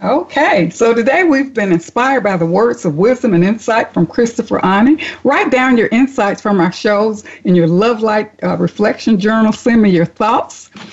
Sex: female